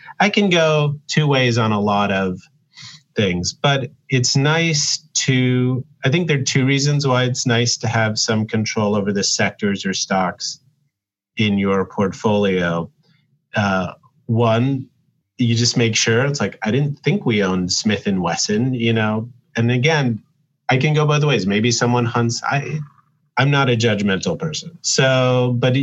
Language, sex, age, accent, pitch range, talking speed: English, male, 30-49, American, 100-140 Hz, 165 wpm